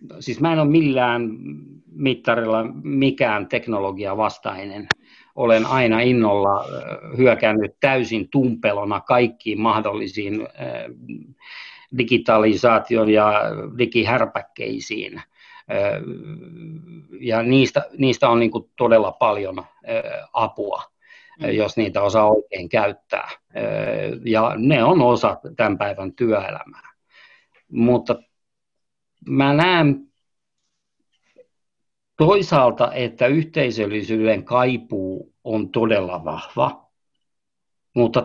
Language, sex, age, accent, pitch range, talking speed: Finnish, male, 50-69, native, 110-145 Hz, 75 wpm